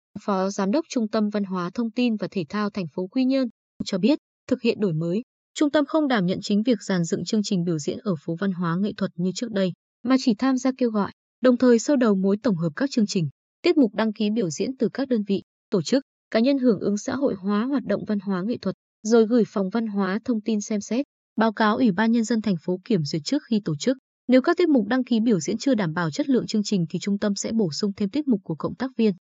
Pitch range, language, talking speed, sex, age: 190-245 Hz, Vietnamese, 280 wpm, female, 20-39